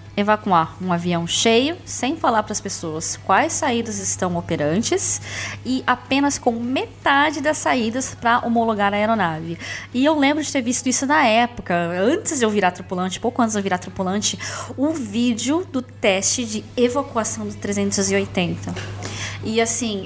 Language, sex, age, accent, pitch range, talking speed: Portuguese, female, 20-39, Brazilian, 180-250 Hz, 160 wpm